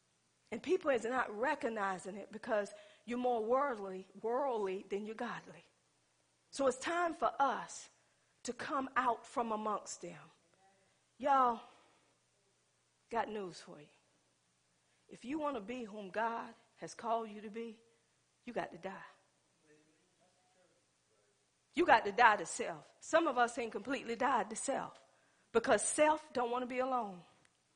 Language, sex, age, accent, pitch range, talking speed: English, female, 40-59, American, 190-270 Hz, 145 wpm